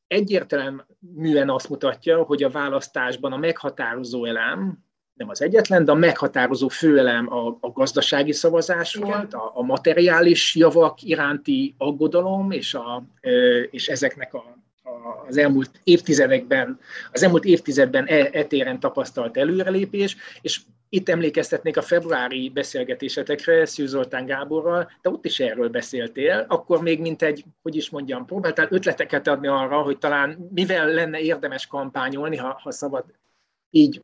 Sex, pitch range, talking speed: male, 140-190 Hz, 135 wpm